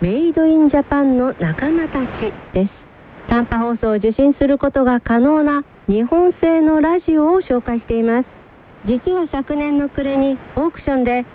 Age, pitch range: 50-69, 230-310 Hz